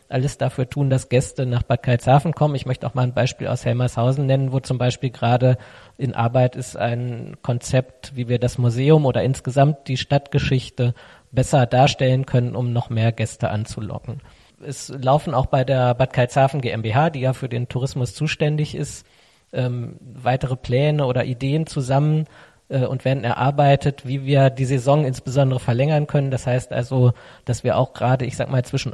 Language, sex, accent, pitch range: German, male, German, 125-140 Hz